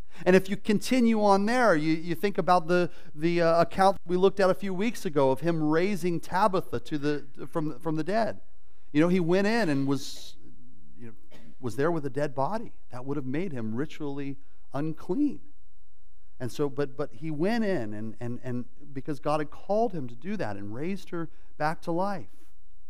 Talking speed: 205 wpm